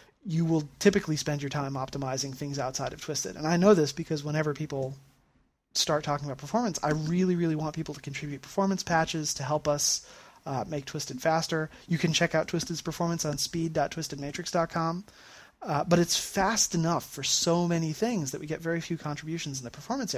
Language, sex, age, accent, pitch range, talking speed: English, male, 30-49, American, 135-165 Hz, 185 wpm